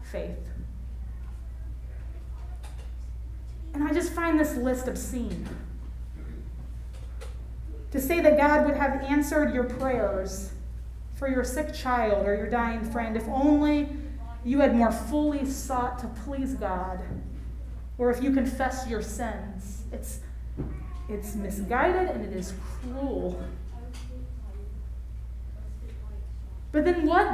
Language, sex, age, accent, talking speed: English, female, 30-49, American, 110 wpm